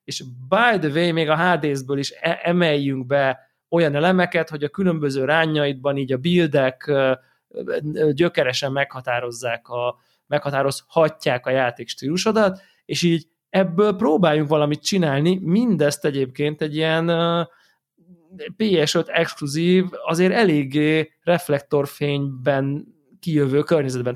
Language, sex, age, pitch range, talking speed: Hungarian, male, 20-39, 130-175 Hz, 105 wpm